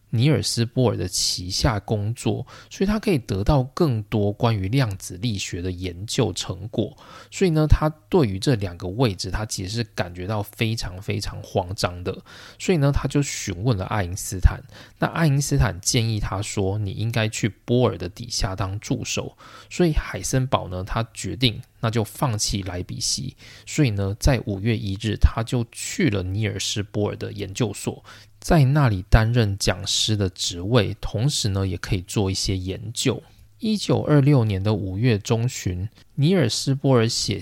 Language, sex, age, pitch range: Chinese, male, 20-39, 100-130 Hz